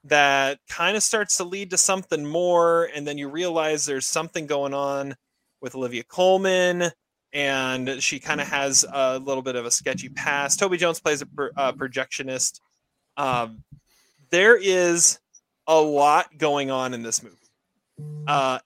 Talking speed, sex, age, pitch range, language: 160 wpm, male, 30-49, 135-185 Hz, English